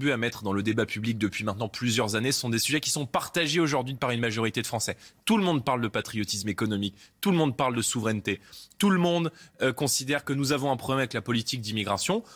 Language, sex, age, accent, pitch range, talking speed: French, male, 20-39, French, 115-160 Hz, 240 wpm